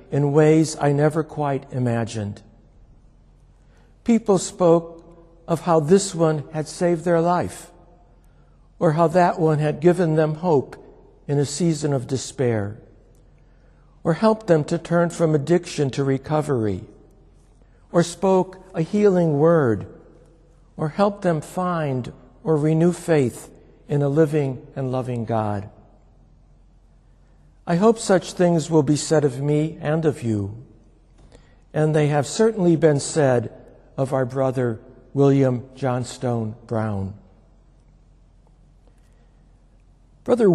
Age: 60-79